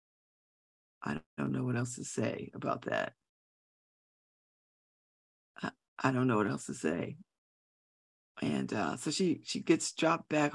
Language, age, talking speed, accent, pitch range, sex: English, 50-69, 135 wpm, American, 125-200 Hz, female